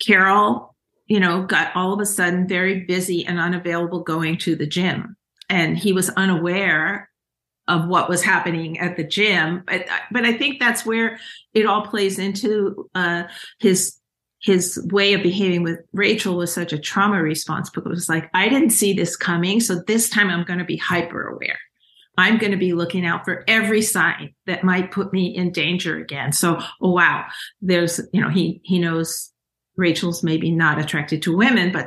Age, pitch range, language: 50-69, 170-200 Hz, English